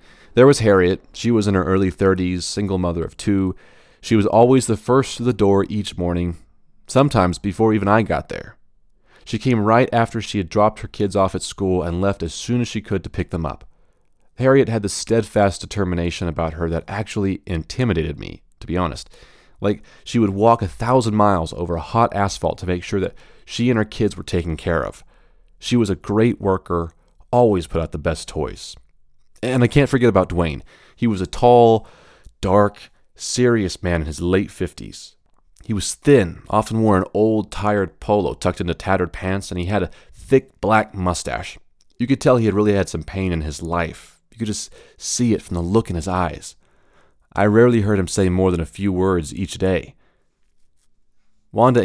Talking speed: 200 wpm